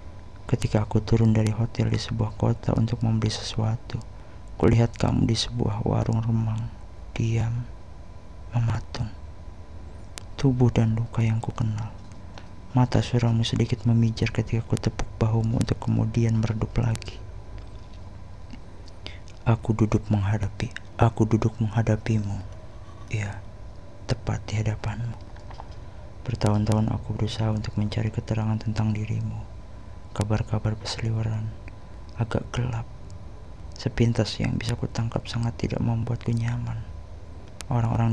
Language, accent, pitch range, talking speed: Indonesian, native, 100-115 Hz, 105 wpm